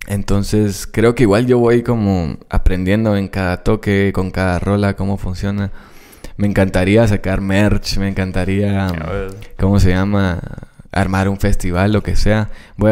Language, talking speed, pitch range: Spanish, 155 wpm, 95-105 Hz